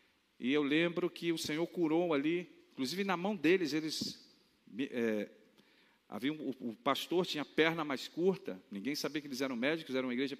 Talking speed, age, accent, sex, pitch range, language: 185 wpm, 50-69, Brazilian, male, 130-185 Hz, Portuguese